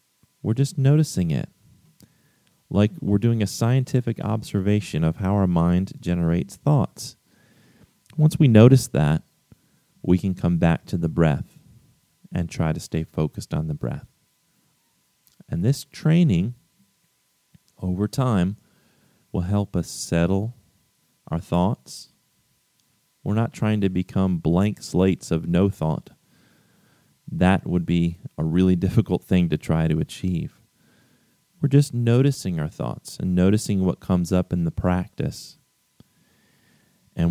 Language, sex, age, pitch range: English, male, 30-49, 85-115 Hz